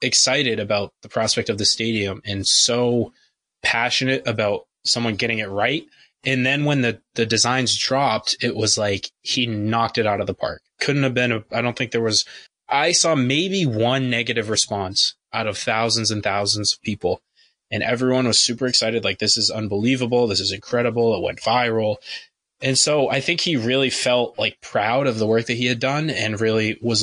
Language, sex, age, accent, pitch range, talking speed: English, male, 20-39, American, 105-125 Hz, 195 wpm